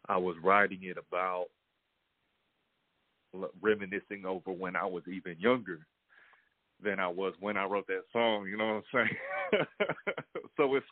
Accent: American